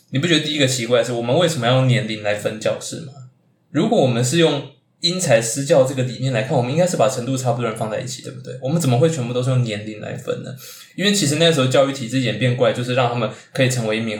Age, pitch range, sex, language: 20-39, 115-140 Hz, male, Chinese